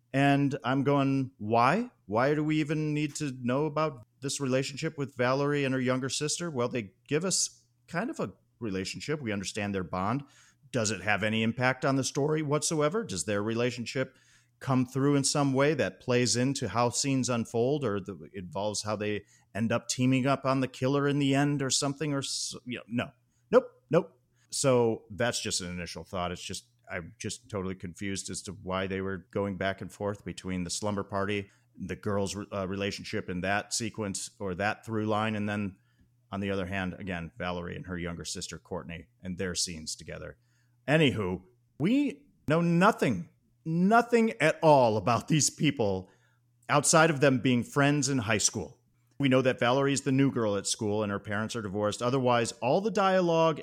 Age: 40-59